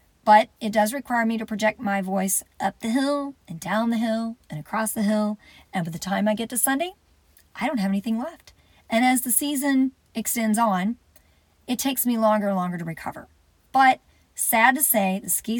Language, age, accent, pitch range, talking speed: English, 40-59, American, 195-235 Hz, 205 wpm